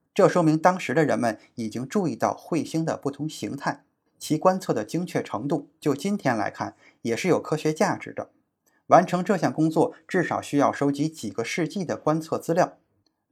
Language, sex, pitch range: Chinese, male, 140-180 Hz